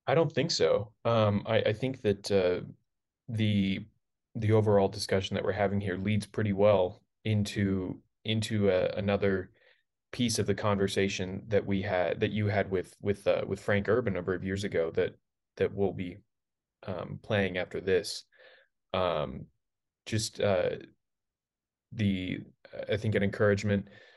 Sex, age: male, 20-39